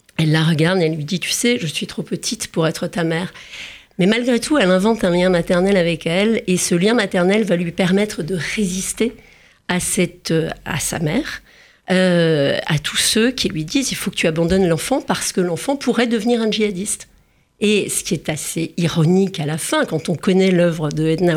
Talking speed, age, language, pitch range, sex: 220 wpm, 40-59, French, 175-220 Hz, female